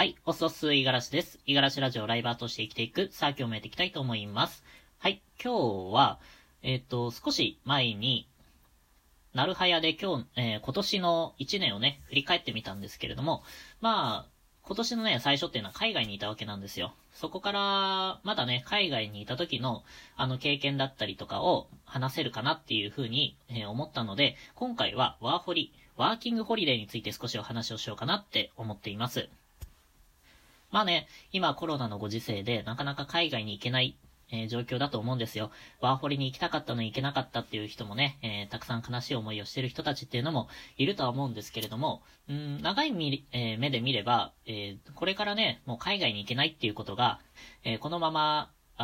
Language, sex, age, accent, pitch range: Japanese, female, 20-39, native, 115-150 Hz